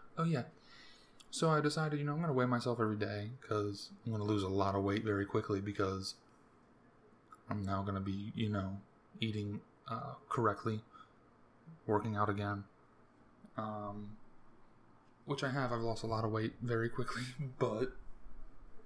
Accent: American